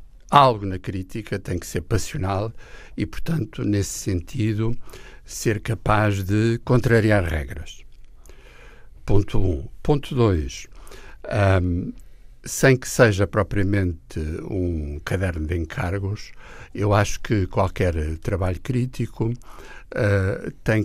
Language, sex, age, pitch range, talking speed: Portuguese, male, 60-79, 85-110 Hz, 105 wpm